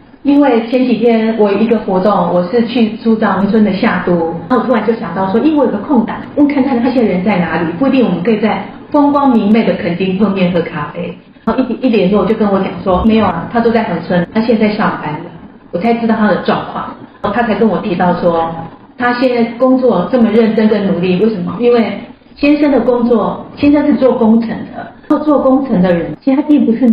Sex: female